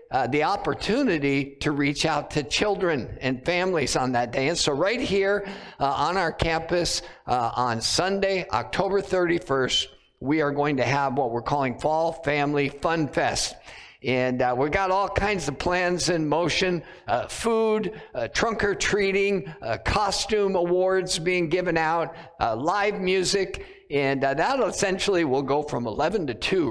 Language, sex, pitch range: English, male, 140-190 Hz